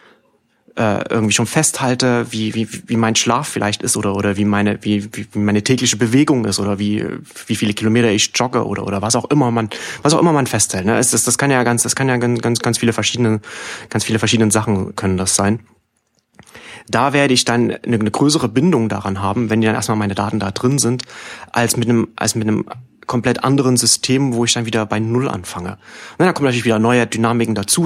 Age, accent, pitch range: 30-49, German, 105-125 Hz